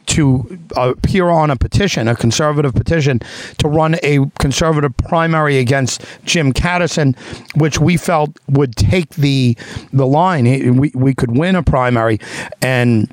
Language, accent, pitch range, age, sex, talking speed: English, American, 120-150 Hz, 50-69, male, 140 wpm